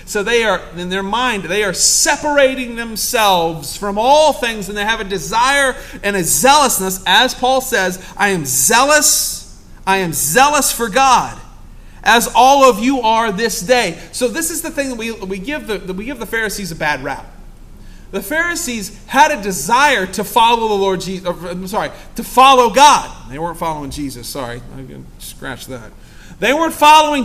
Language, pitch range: English, 195-270 Hz